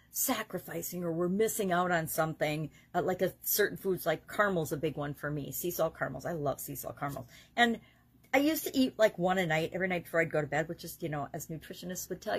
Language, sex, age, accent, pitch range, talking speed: English, female, 40-59, American, 155-205 Hz, 245 wpm